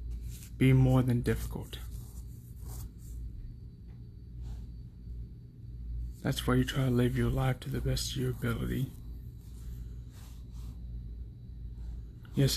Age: 20-39